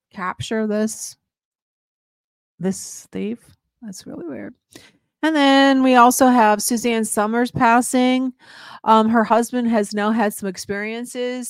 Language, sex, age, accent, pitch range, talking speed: English, female, 50-69, American, 175-220 Hz, 120 wpm